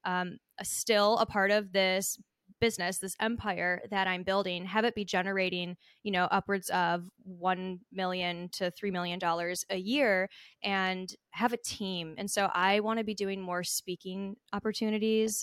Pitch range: 180-220 Hz